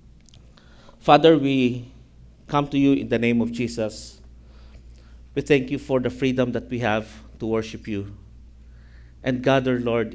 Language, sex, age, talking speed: English, male, 50-69, 150 wpm